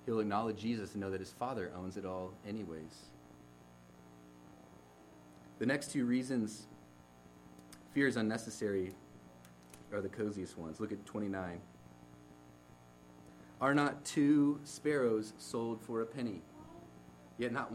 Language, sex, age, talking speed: English, male, 30-49, 120 wpm